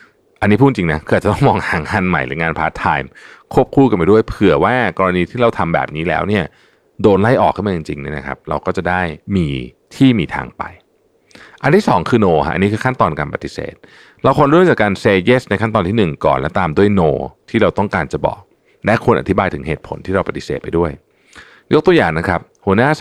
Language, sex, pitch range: Thai, male, 80-110 Hz